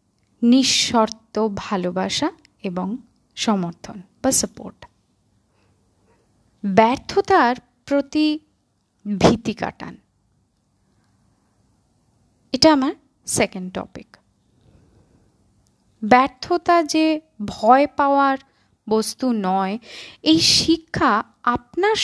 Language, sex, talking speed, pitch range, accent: Bengali, female, 65 wpm, 190-270 Hz, native